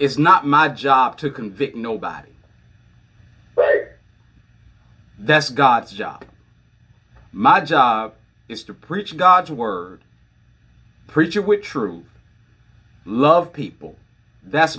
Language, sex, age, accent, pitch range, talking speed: English, male, 40-59, American, 110-140 Hz, 100 wpm